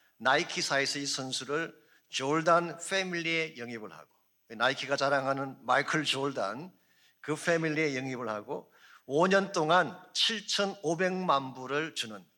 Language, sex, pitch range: Korean, male, 145-180 Hz